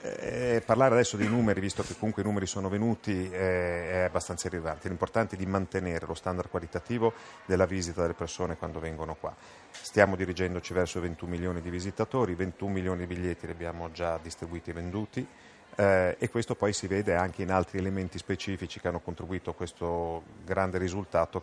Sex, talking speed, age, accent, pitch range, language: male, 175 wpm, 40-59, native, 85-95 Hz, Italian